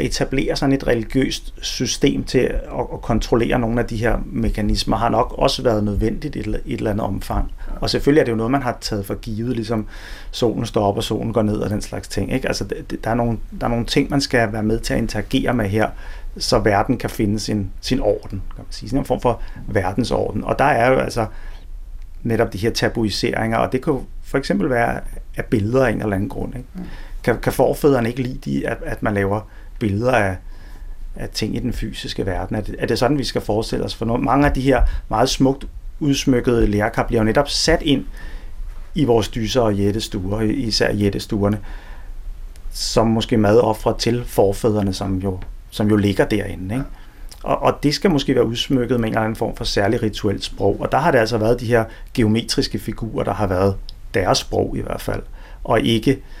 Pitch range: 100-120 Hz